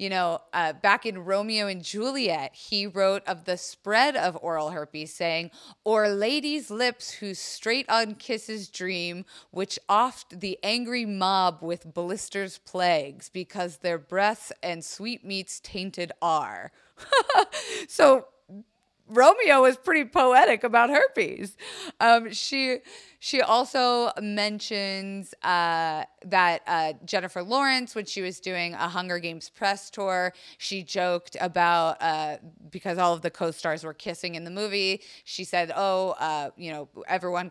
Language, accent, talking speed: English, American, 140 wpm